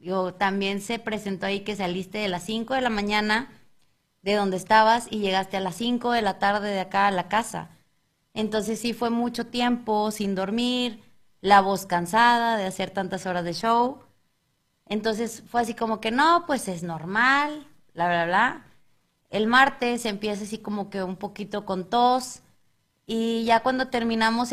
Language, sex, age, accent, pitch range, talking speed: Spanish, female, 20-39, Mexican, 200-240 Hz, 175 wpm